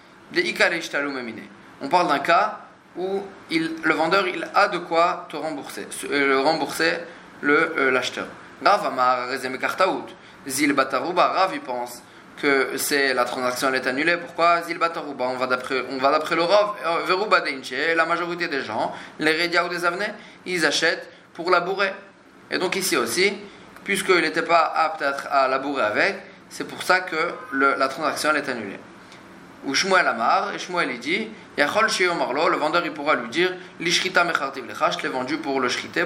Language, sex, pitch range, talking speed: French, male, 145-185 Hz, 155 wpm